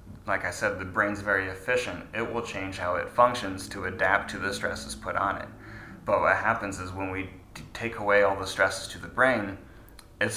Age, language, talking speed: 20-39, English, 210 wpm